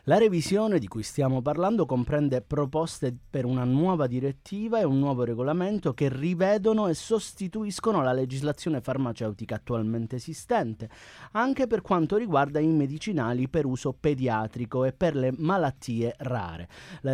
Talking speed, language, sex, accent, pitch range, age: 140 wpm, Italian, male, native, 130-185 Hz, 30-49